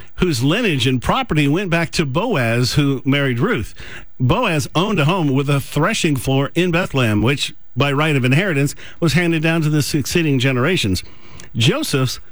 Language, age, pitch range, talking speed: English, 50-69, 120-155 Hz, 165 wpm